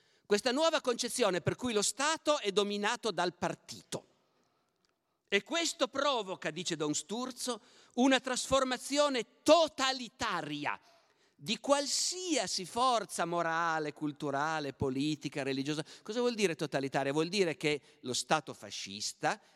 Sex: male